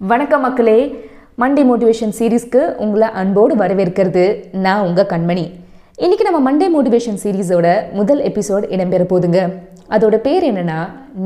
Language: Tamil